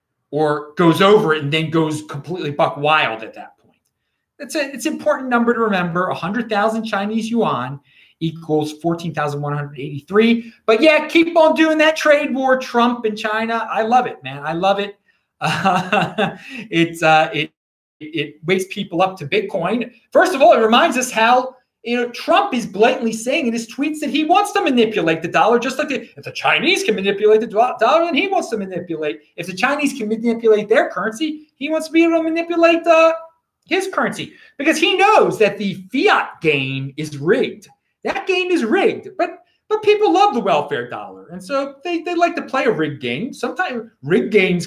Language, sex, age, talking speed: English, male, 30-49, 195 wpm